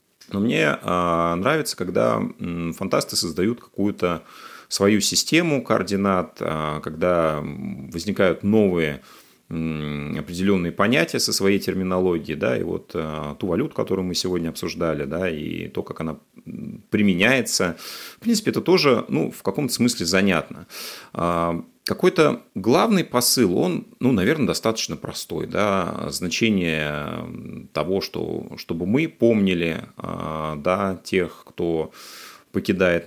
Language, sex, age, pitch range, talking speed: Russian, male, 30-49, 80-100 Hz, 105 wpm